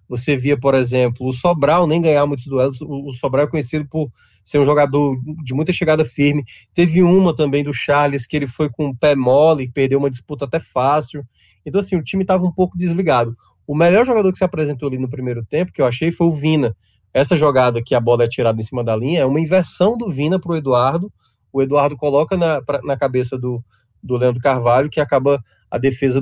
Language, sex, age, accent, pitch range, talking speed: Portuguese, male, 20-39, Brazilian, 125-160 Hz, 220 wpm